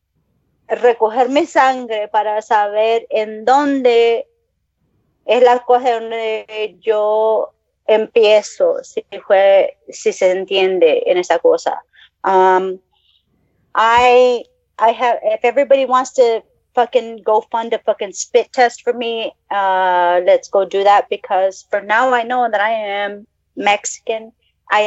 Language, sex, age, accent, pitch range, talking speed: English, female, 30-49, American, 205-255 Hz, 130 wpm